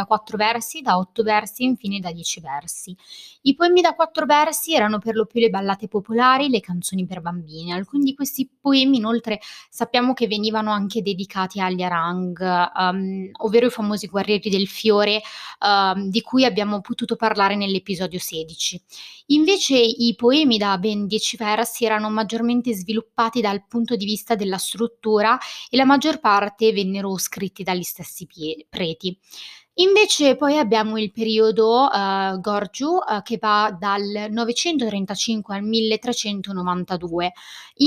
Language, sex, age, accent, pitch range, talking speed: Italian, female, 20-39, native, 195-245 Hz, 145 wpm